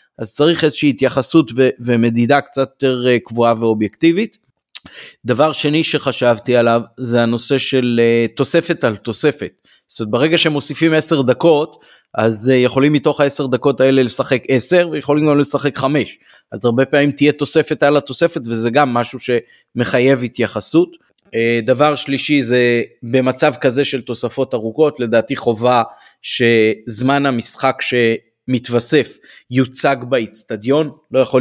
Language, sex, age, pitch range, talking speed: Hebrew, male, 30-49, 115-145 Hz, 130 wpm